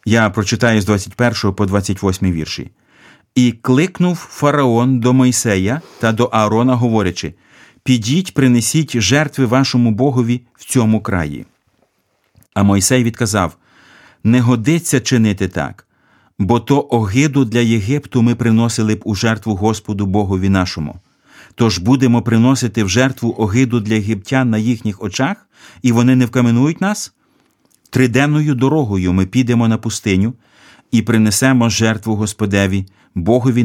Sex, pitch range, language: male, 105-130 Hz, Ukrainian